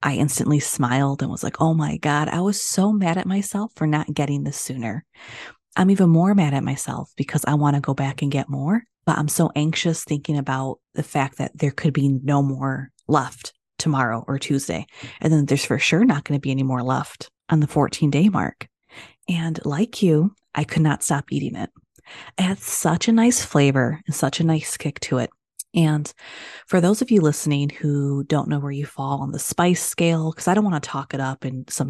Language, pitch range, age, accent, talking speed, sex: English, 135-165 Hz, 30-49, American, 220 wpm, female